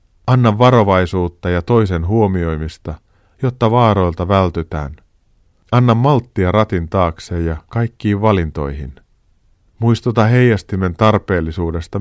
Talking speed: 90 wpm